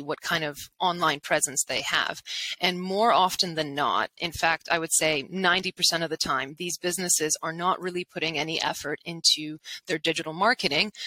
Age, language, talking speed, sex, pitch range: 20-39, English, 180 wpm, female, 155-180 Hz